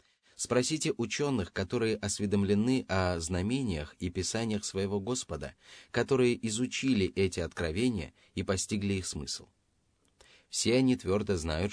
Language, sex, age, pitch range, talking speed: Russian, male, 30-49, 90-115 Hz, 115 wpm